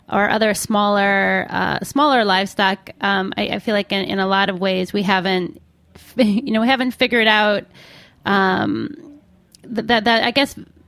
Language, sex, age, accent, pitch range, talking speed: English, female, 20-39, American, 185-215 Hz, 175 wpm